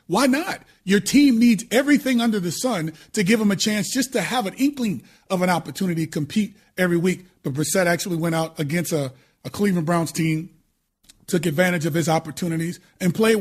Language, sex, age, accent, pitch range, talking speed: English, male, 30-49, American, 170-210 Hz, 195 wpm